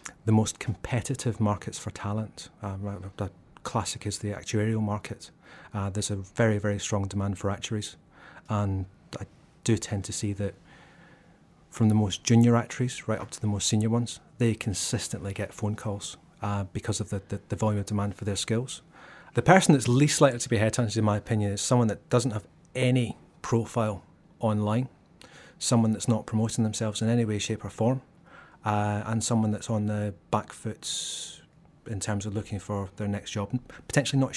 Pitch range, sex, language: 105-120 Hz, male, English